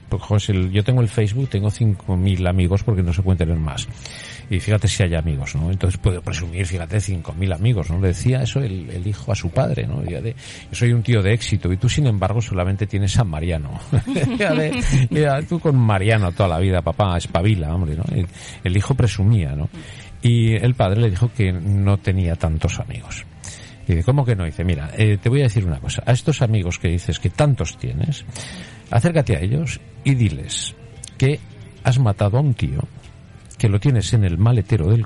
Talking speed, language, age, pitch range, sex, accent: 205 wpm, Spanish, 50-69, 95-125 Hz, male, Spanish